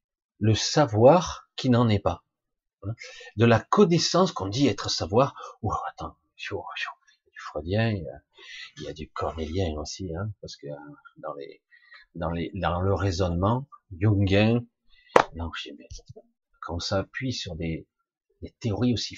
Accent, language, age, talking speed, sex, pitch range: French, French, 50-69, 140 wpm, male, 95-145 Hz